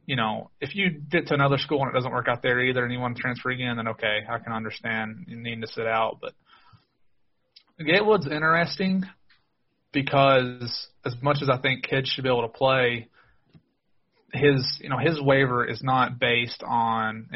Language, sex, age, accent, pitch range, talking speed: English, male, 30-49, American, 120-145 Hz, 195 wpm